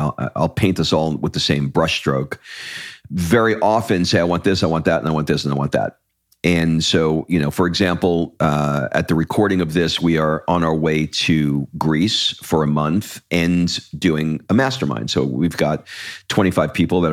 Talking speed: 205 wpm